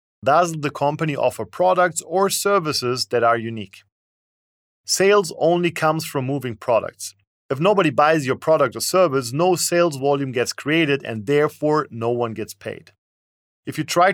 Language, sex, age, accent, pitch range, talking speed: English, male, 40-59, German, 115-160 Hz, 155 wpm